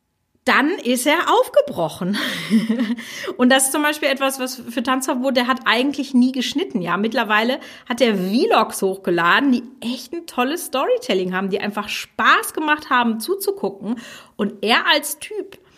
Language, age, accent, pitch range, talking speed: German, 30-49, German, 210-275 Hz, 150 wpm